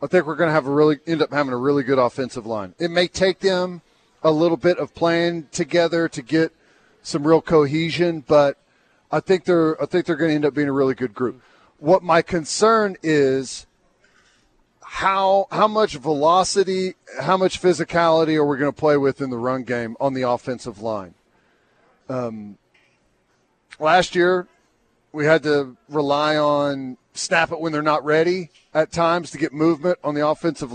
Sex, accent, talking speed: male, American, 185 wpm